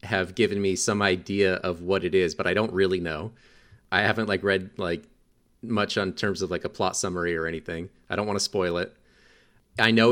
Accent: American